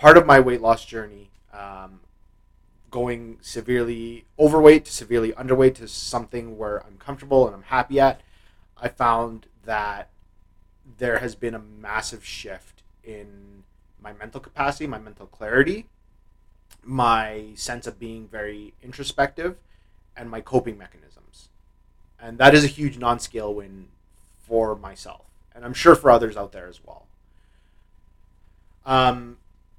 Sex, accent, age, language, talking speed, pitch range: male, American, 30-49, English, 135 wpm, 90-120 Hz